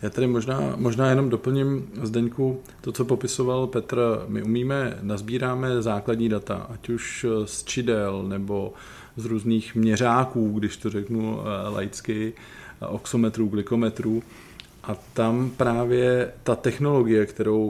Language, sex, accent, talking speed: Czech, male, native, 120 wpm